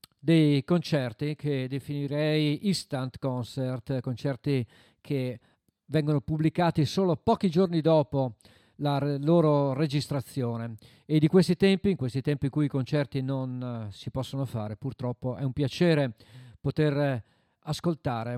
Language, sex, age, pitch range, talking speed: Italian, male, 40-59, 125-155 Hz, 125 wpm